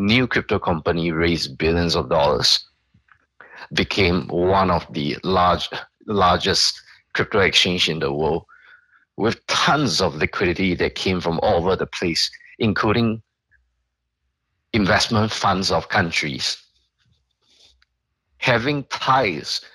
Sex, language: male, English